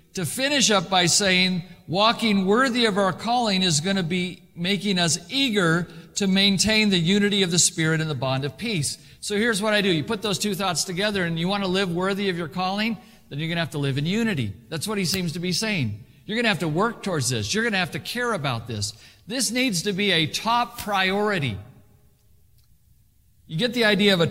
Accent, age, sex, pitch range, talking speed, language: American, 50-69, male, 165-220 Hz, 230 wpm, English